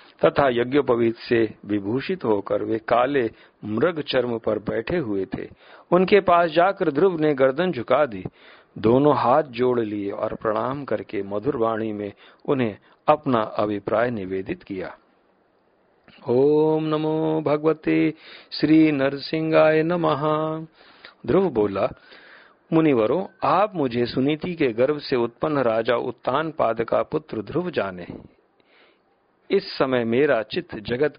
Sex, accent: male, native